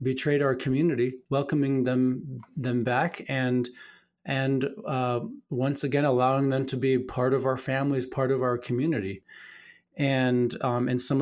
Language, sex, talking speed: English, male, 150 wpm